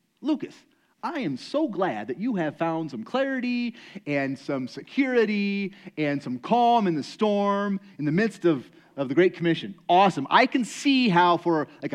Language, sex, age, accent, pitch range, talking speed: English, male, 30-49, American, 150-230 Hz, 175 wpm